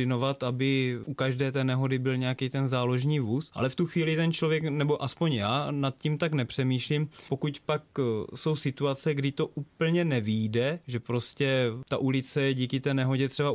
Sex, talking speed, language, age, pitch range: male, 175 wpm, Czech, 20-39, 120-140 Hz